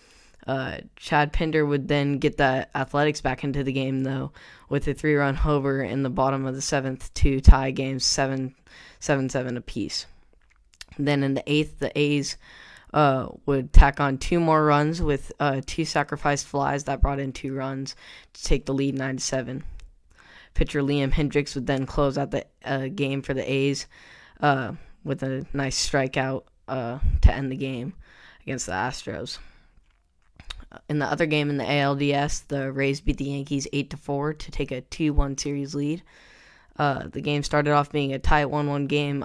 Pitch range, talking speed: 135-145 Hz, 170 wpm